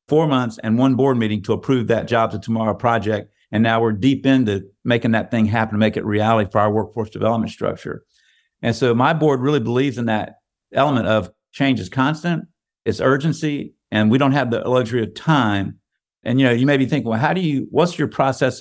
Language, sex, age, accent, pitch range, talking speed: English, male, 50-69, American, 110-140 Hz, 220 wpm